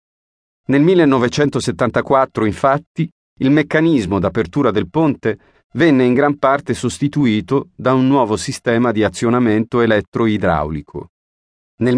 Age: 40-59